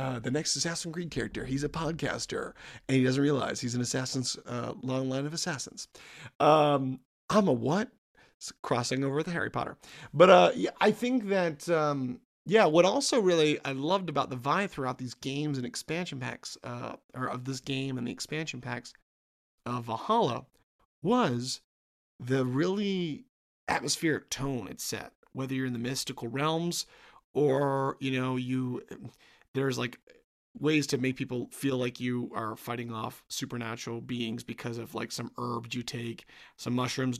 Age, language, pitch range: 40-59, English, 125-145 Hz